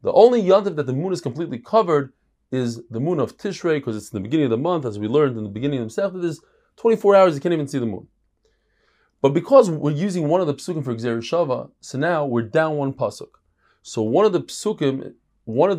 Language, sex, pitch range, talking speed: English, male, 115-170 Hz, 240 wpm